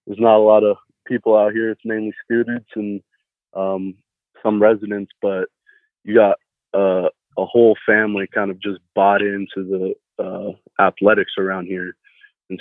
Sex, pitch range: male, 95-105 Hz